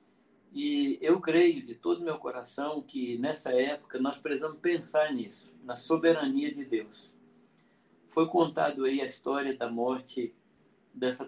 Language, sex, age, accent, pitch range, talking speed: Portuguese, male, 50-69, Brazilian, 130-170 Hz, 140 wpm